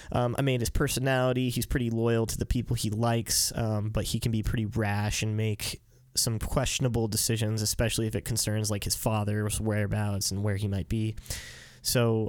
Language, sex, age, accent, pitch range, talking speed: English, male, 20-39, American, 105-120 Hz, 190 wpm